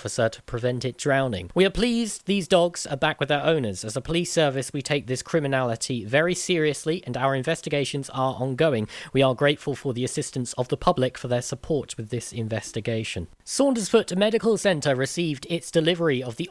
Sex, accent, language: male, British, English